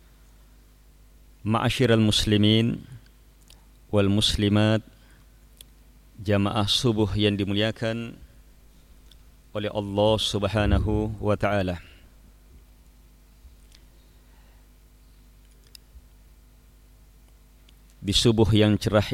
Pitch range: 85-110 Hz